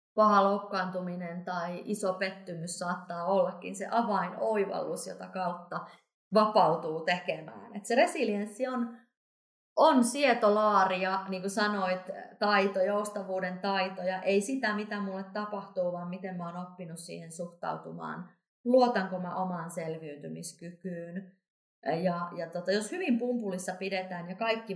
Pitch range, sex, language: 185-235 Hz, female, Finnish